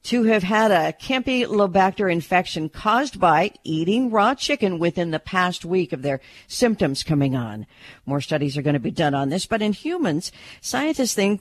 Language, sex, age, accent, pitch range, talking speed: English, female, 50-69, American, 150-210 Hz, 180 wpm